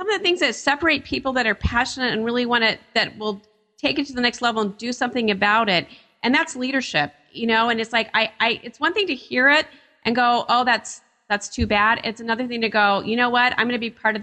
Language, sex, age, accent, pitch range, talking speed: English, female, 40-59, American, 215-255 Hz, 270 wpm